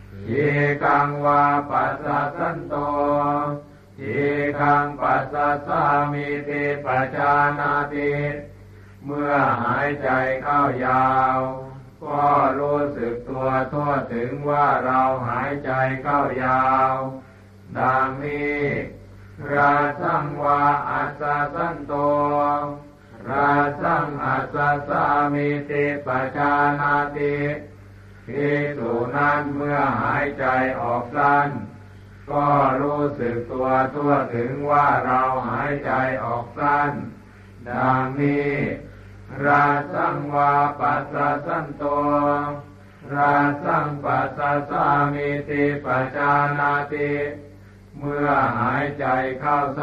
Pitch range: 130-145 Hz